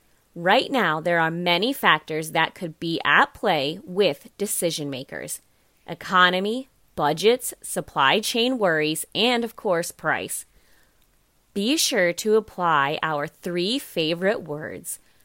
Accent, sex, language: American, female, English